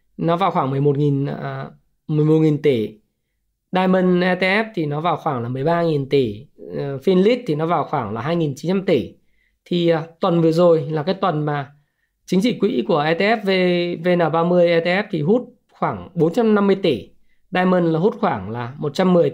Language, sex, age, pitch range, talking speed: Vietnamese, male, 20-39, 155-210 Hz, 160 wpm